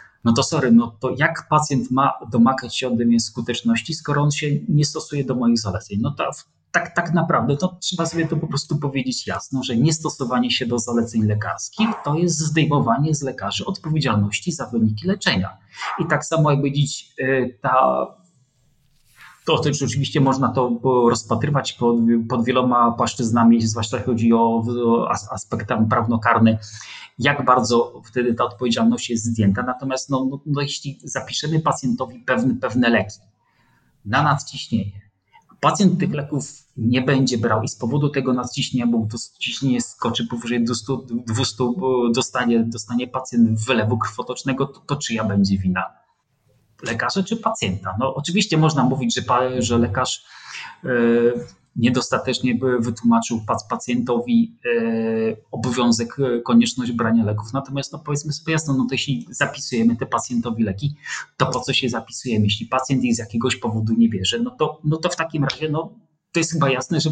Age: 30-49